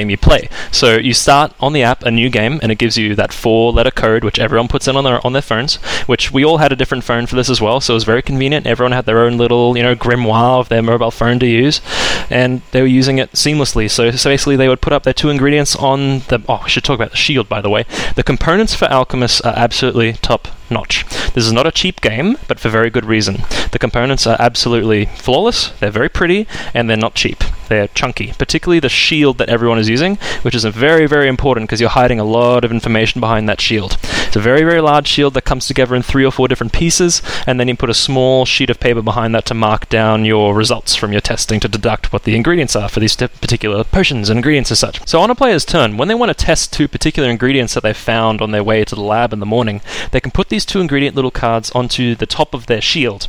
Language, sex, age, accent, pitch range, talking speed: English, male, 20-39, Australian, 115-135 Hz, 260 wpm